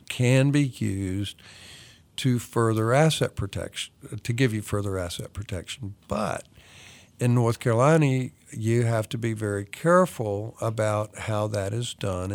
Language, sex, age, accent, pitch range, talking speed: English, male, 50-69, American, 105-130 Hz, 135 wpm